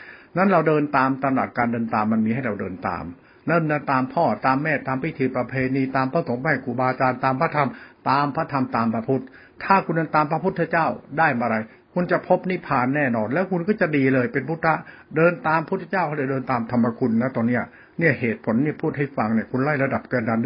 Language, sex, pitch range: Thai, male, 130-165 Hz